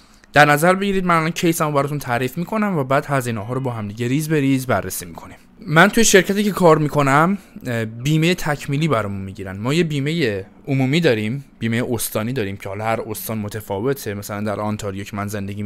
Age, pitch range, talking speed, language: 20-39, 115-160 Hz, 195 wpm, Persian